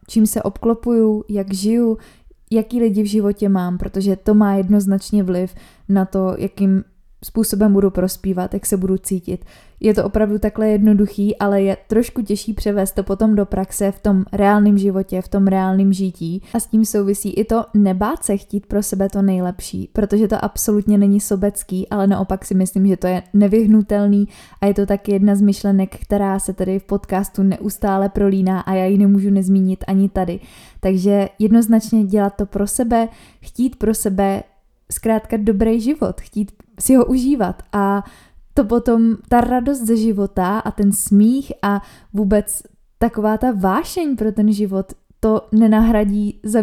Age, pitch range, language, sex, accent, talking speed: 20-39, 195-215 Hz, Czech, female, native, 170 wpm